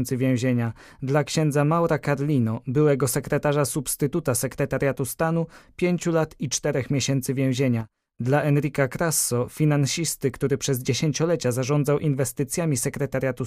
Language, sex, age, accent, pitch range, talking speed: Polish, male, 20-39, native, 130-150 Hz, 115 wpm